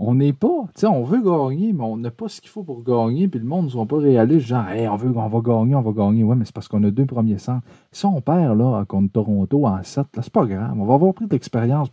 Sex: male